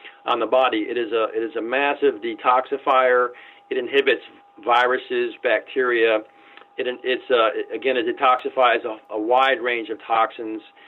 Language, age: English, 40-59